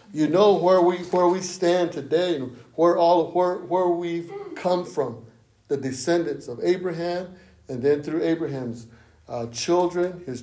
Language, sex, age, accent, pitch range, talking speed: English, male, 60-79, American, 120-165 Hz, 155 wpm